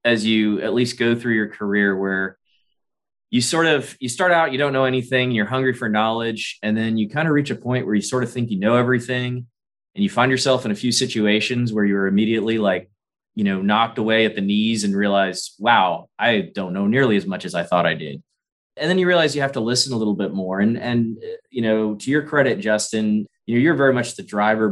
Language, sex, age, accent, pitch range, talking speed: English, male, 20-39, American, 105-130 Hz, 240 wpm